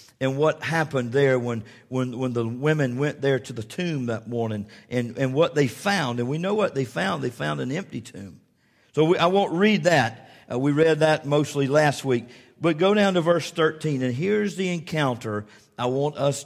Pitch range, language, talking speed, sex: 125-160 Hz, English, 205 wpm, male